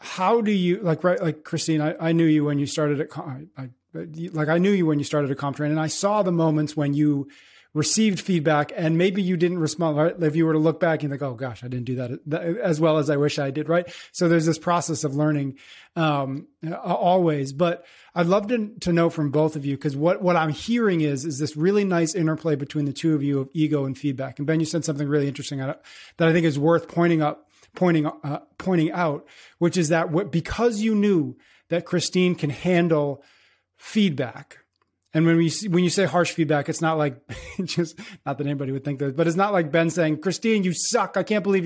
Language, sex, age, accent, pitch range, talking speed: English, male, 30-49, American, 150-175 Hz, 235 wpm